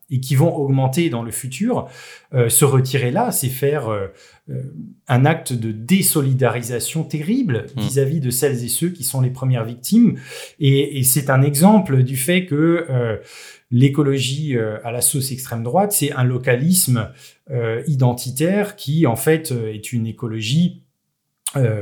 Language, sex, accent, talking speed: French, male, French, 155 wpm